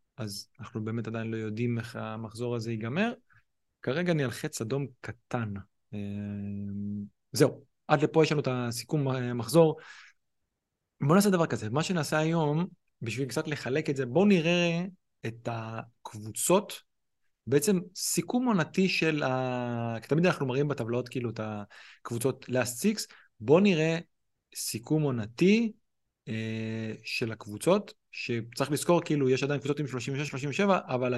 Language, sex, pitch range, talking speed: Hebrew, male, 115-155 Hz, 135 wpm